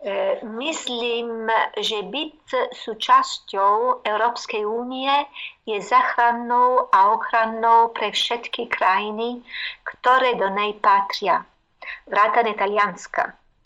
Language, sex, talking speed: Slovak, female, 90 wpm